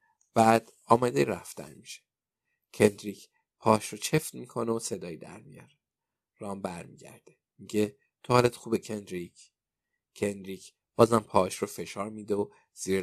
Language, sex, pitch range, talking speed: Persian, male, 100-120 Hz, 125 wpm